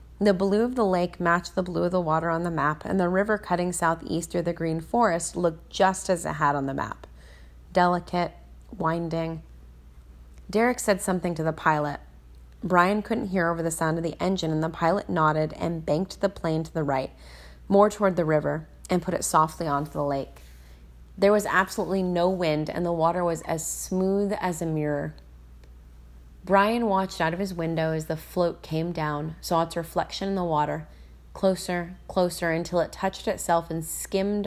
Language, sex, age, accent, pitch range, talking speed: English, female, 30-49, American, 150-185 Hz, 190 wpm